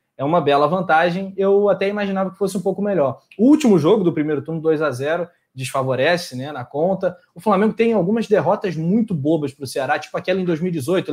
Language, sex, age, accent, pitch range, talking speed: Portuguese, male, 20-39, Brazilian, 150-195 Hz, 210 wpm